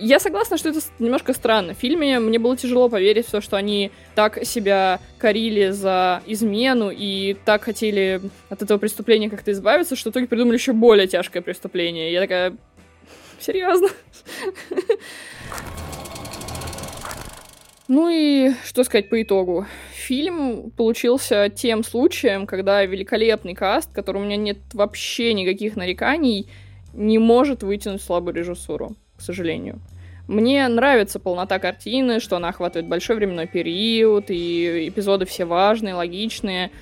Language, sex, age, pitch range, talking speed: Russian, female, 20-39, 195-250 Hz, 135 wpm